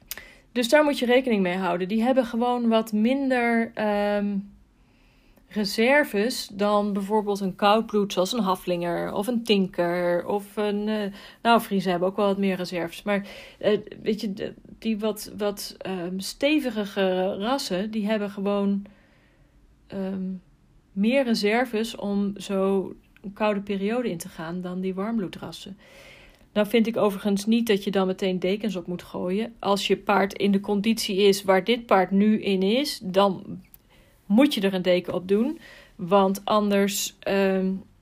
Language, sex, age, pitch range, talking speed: Dutch, female, 40-59, 190-215 Hz, 155 wpm